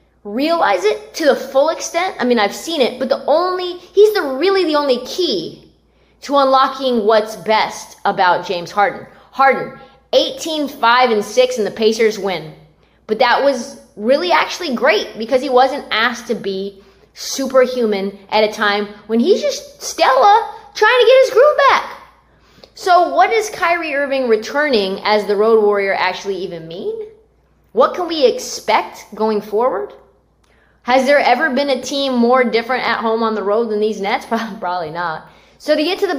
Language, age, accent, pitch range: English, 20-39, American, 205-275 Hz